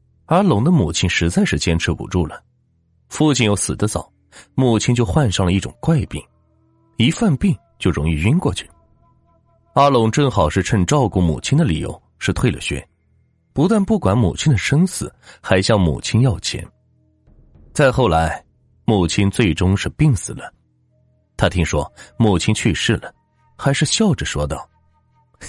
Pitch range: 90-145 Hz